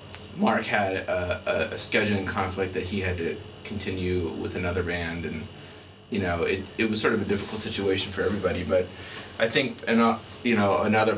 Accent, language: American, English